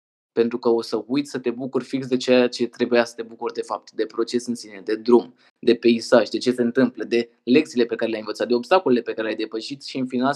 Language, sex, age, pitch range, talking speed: Romanian, male, 20-39, 120-140 Hz, 260 wpm